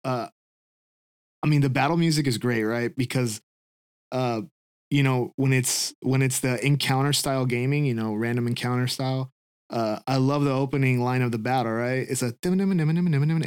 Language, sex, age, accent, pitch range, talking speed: English, male, 20-39, American, 125-150 Hz, 175 wpm